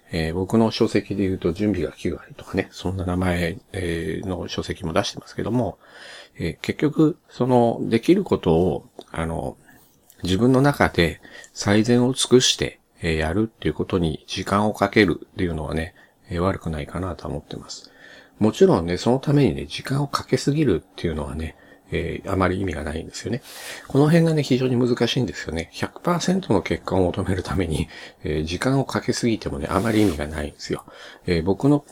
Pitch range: 85-125 Hz